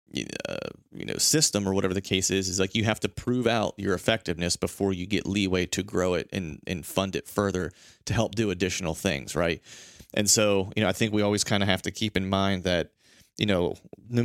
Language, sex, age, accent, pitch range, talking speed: English, male, 30-49, American, 90-105 Hz, 230 wpm